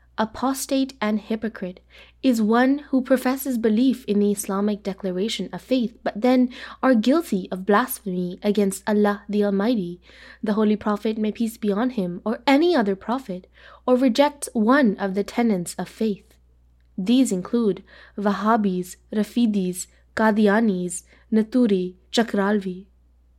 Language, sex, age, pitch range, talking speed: English, female, 20-39, 195-255 Hz, 130 wpm